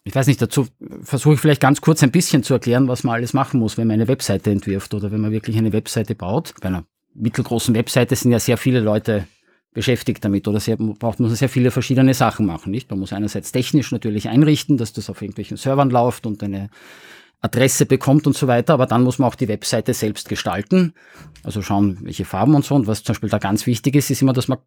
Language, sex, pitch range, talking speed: German, male, 110-140 Hz, 230 wpm